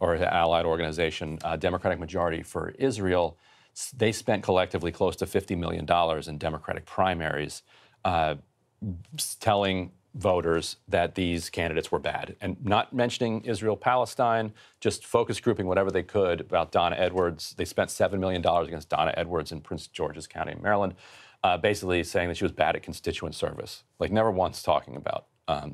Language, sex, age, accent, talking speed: English, male, 40-59, American, 155 wpm